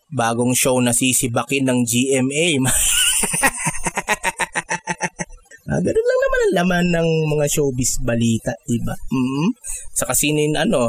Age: 20-39